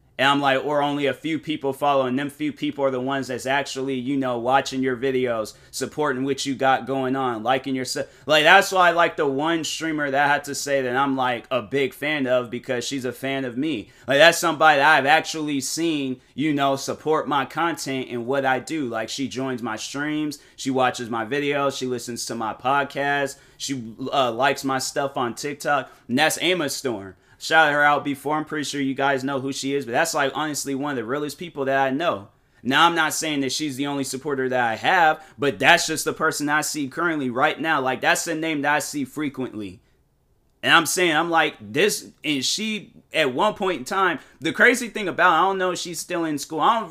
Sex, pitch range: male, 130-155 Hz